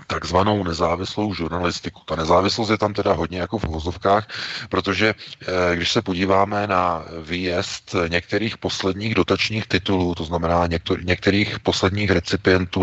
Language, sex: Czech, male